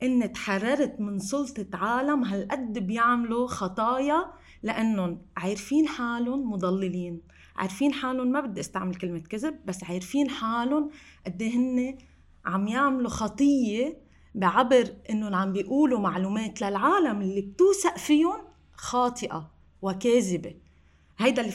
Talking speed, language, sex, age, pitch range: 110 wpm, Arabic, female, 30-49, 190-280 Hz